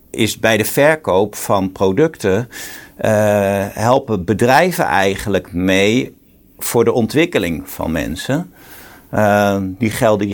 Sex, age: male, 50-69